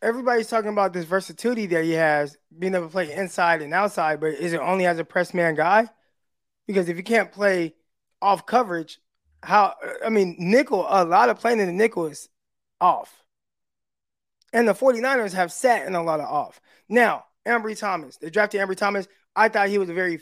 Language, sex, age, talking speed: English, male, 20-39, 200 wpm